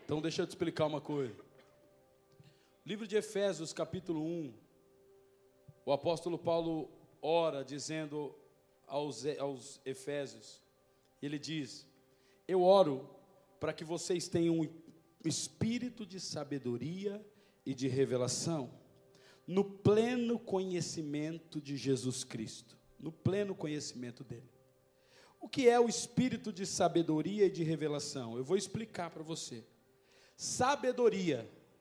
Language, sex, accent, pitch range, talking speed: Portuguese, male, Brazilian, 145-220 Hz, 115 wpm